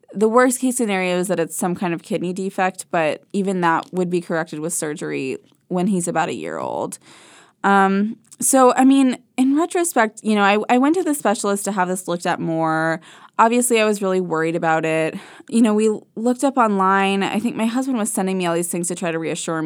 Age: 20-39